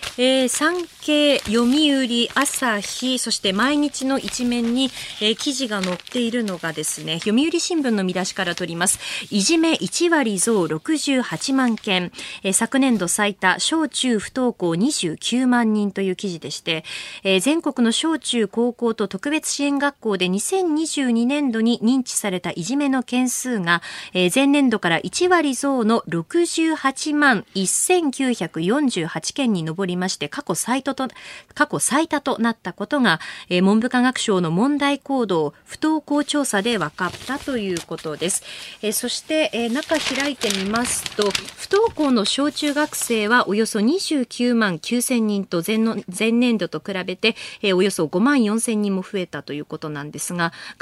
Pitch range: 190-275 Hz